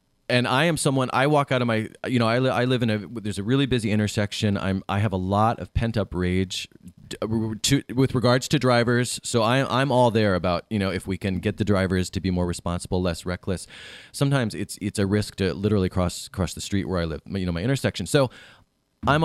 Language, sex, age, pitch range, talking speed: English, male, 30-49, 100-130 Hz, 240 wpm